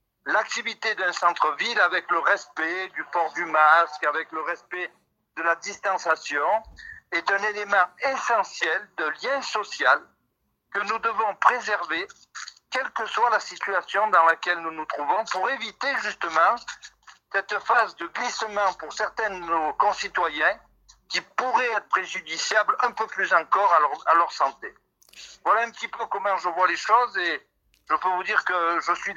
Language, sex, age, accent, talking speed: French, male, 60-79, French, 160 wpm